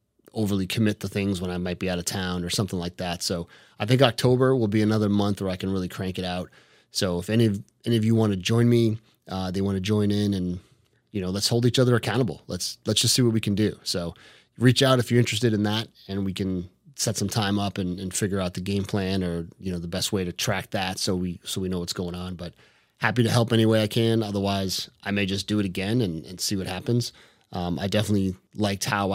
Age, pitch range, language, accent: 30-49, 95-115 Hz, English, American